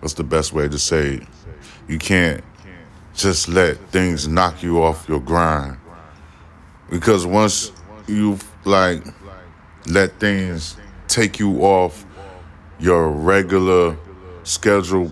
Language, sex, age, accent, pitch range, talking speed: English, male, 10-29, American, 80-95 Hz, 105 wpm